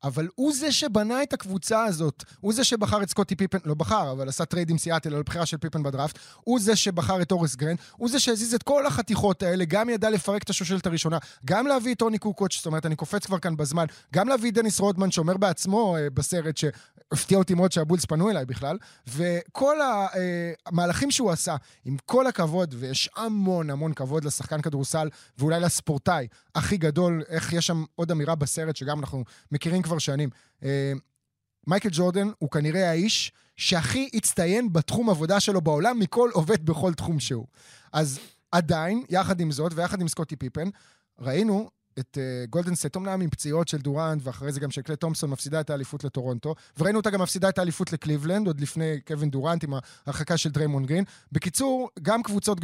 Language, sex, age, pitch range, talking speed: Hebrew, male, 20-39, 150-200 Hz, 180 wpm